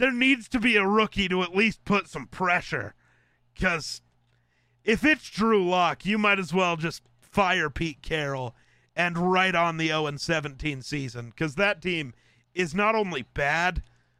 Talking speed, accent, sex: 160 wpm, American, male